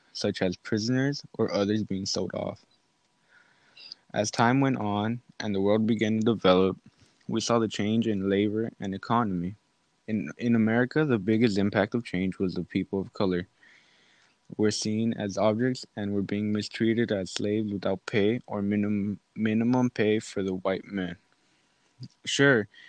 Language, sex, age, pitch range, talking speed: English, male, 20-39, 100-115 Hz, 155 wpm